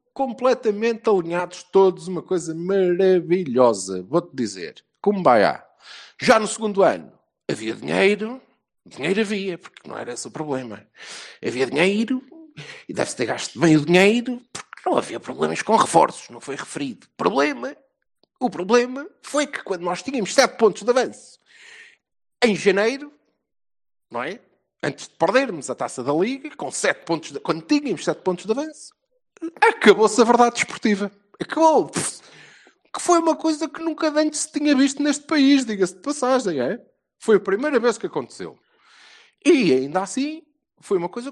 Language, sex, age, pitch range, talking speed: Portuguese, male, 50-69, 185-275 Hz, 160 wpm